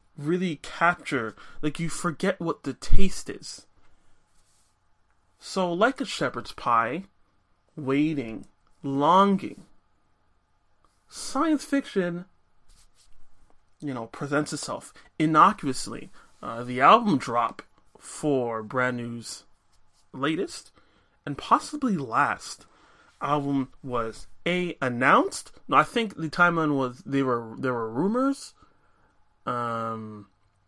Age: 30-49